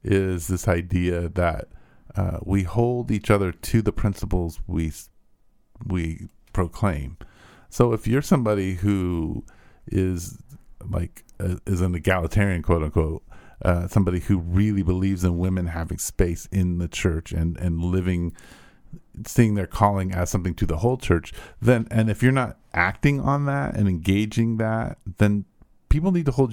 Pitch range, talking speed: 90-110 Hz, 150 wpm